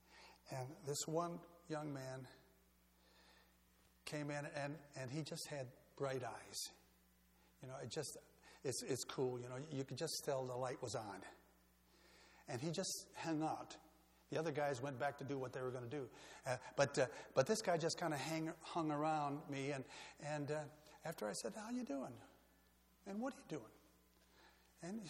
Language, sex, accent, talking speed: English, male, American, 185 wpm